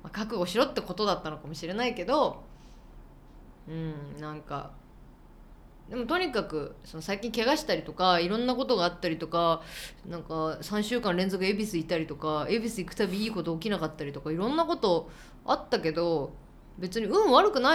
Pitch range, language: 165-240 Hz, Japanese